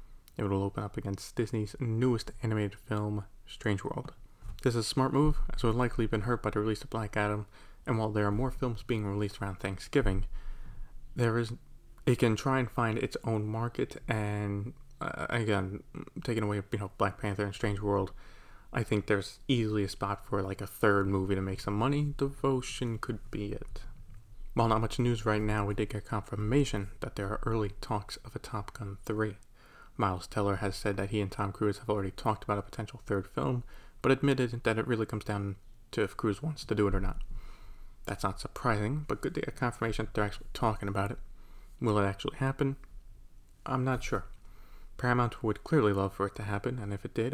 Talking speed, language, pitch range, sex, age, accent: 210 wpm, English, 100-120 Hz, male, 20-39, American